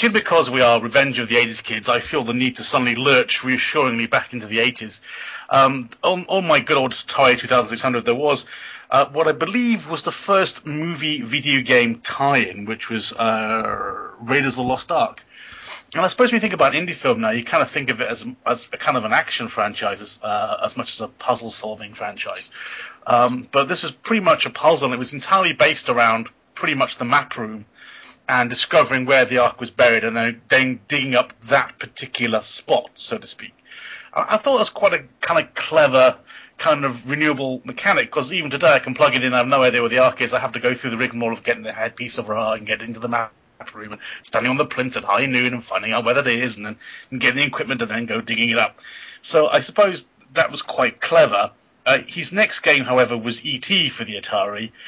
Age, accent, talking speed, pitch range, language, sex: 30-49, British, 230 wpm, 115-145 Hz, English, male